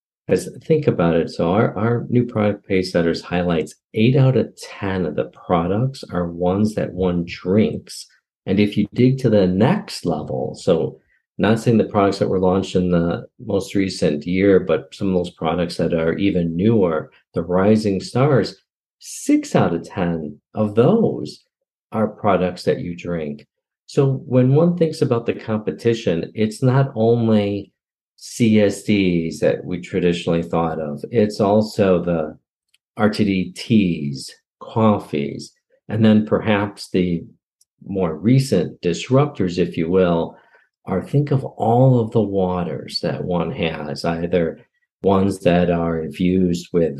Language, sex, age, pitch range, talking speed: English, male, 50-69, 90-110 Hz, 145 wpm